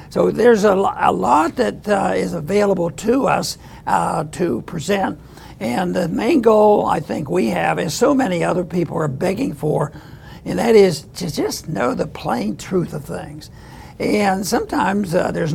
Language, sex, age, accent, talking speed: English, male, 60-79, American, 170 wpm